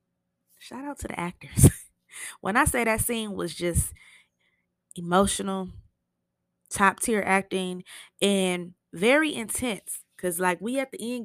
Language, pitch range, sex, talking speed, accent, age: English, 165-205 Hz, female, 135 wpm, American, 20-39